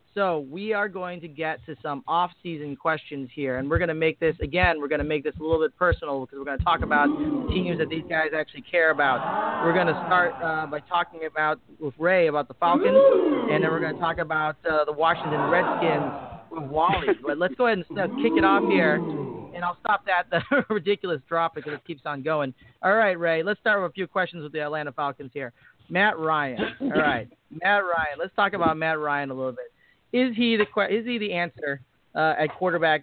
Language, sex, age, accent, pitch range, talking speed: English, male, 30-49, American, 150-185 Hz, 230 wpm